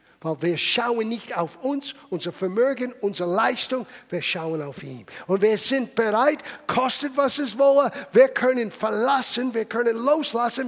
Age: 50-69